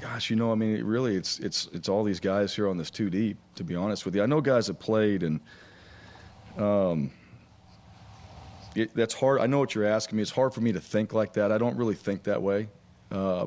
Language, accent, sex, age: English, American, male, 40-59